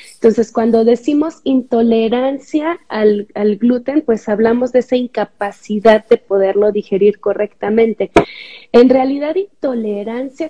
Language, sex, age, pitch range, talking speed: Spanish, female, 30-49, 210-250 Hz, 110 wpm